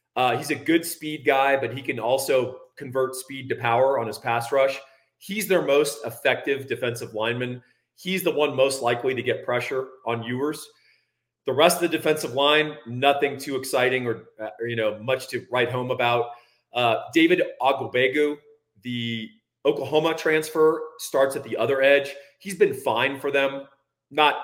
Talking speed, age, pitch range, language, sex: 170 wpm, 40-59, 125-165 Hz, English, male